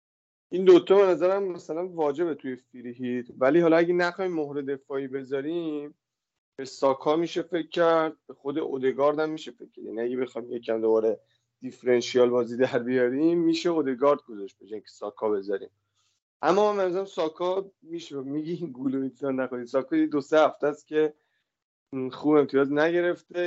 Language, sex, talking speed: Persian, male, 150 wpm